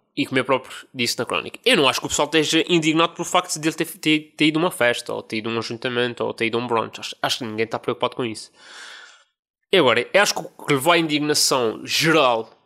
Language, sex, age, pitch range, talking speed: Portuguese, male, 20-39, 125-175 Hz, 270 wpm